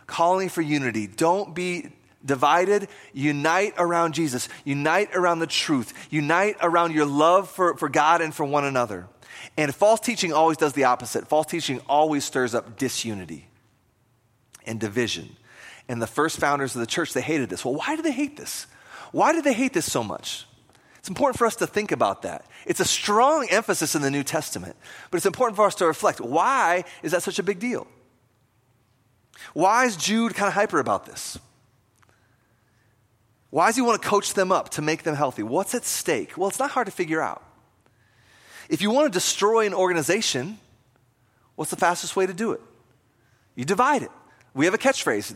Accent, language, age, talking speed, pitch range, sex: American, English, 30-49, 190 wpm, 130-210 Hz, male